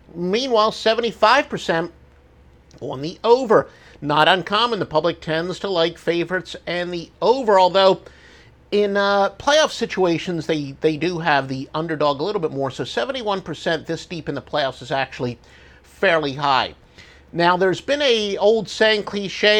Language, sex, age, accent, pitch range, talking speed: English, male, 50-69, American, 135-195 Hz, 150 wpm